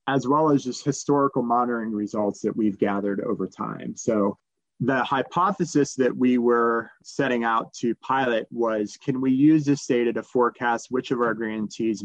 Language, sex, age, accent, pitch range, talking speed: English, male, 30-49, American, 110-135 Hz, 170 wpm